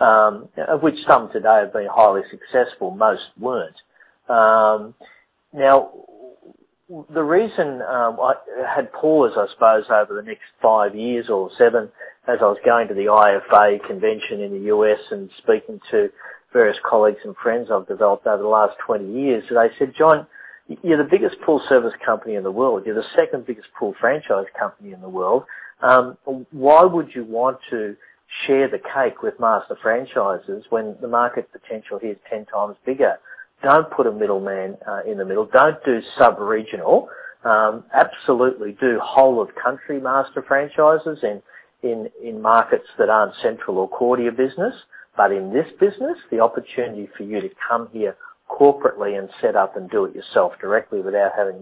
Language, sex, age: English, male, 40-59